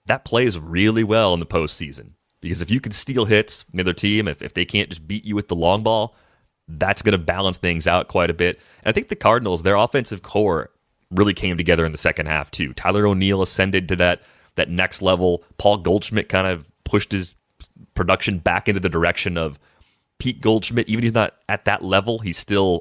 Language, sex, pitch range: English, male, 90-105 Hz